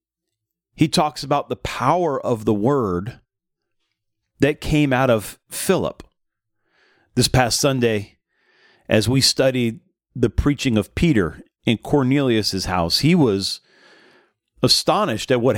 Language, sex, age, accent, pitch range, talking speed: English, male, 40-59, American, 110-145 Hz, 120 wpm